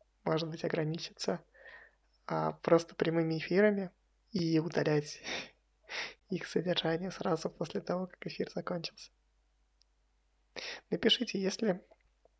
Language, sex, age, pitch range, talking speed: Russian, male, 20-39, 160-205 Hz, 90 wpm